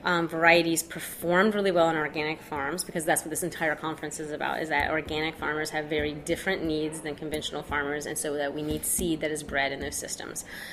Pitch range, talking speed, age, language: 155-180 Hz, 220 wpm, 30-49, English